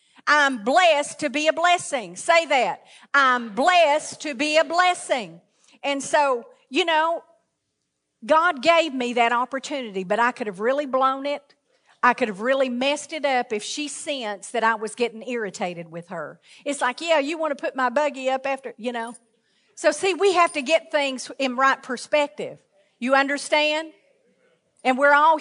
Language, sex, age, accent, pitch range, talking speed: English, female, 50-69, American, 225-295 Hz, 175 wpm